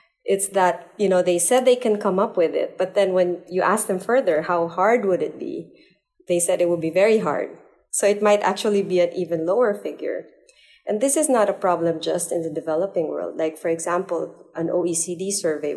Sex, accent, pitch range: female, Filipino, 165-205 Hz